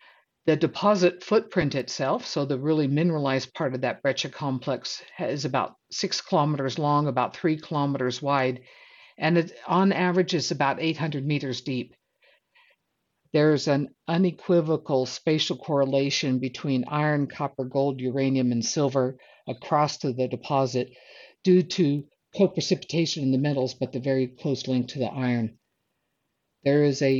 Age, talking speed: 60-79, 145 wpm